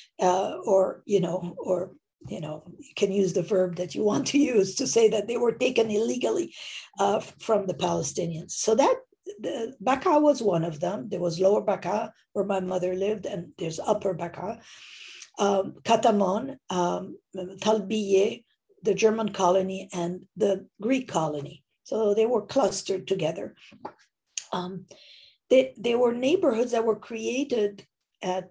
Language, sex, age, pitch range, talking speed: English, female, 50-69, 185-230 Hz, 155 wpm